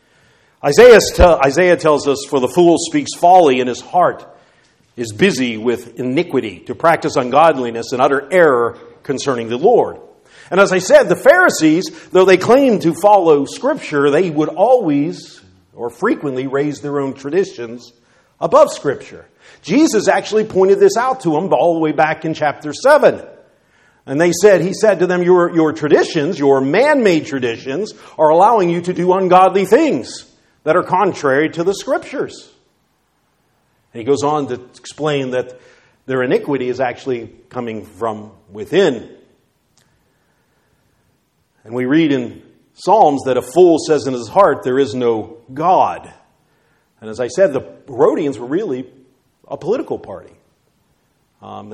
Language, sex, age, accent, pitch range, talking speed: English, male, 50-69, American, 125-180 Hz, 150 wpm